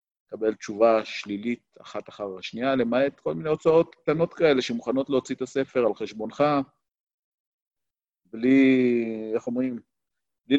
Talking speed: 125 wpm